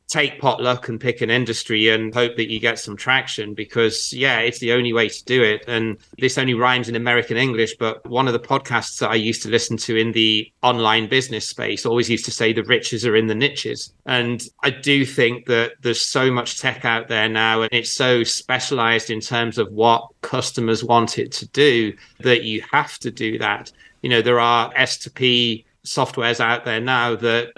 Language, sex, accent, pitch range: English, male, British, 115-125 Hz